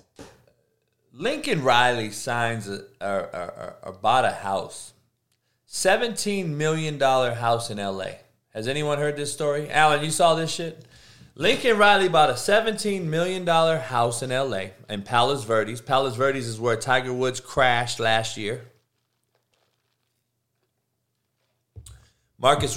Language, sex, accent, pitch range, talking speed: English, male, American, 115-145 Hz, 125 wpm